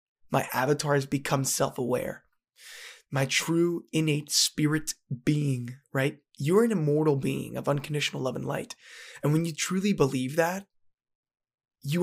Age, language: 20-39, English